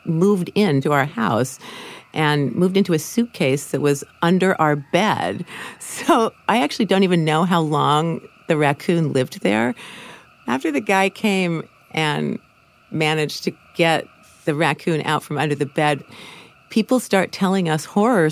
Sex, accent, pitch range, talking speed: female, American, 125-160 Hz, 150 wpm